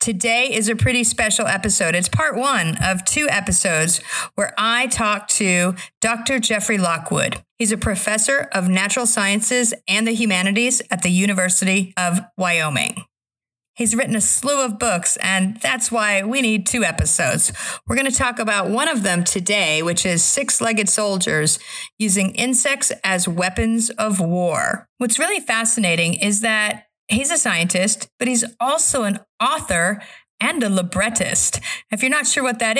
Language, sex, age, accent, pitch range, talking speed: English, female, 50-69, American, 190-240 Hz, 155 wpm